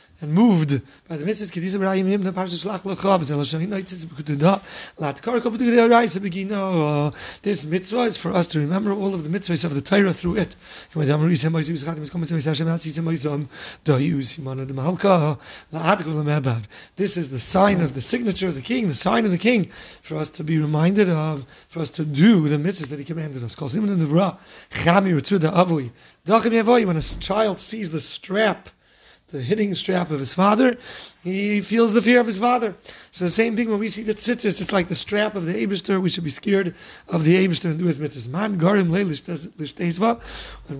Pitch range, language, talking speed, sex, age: 155-205 Hz, English, 145 wpm, male, 30-49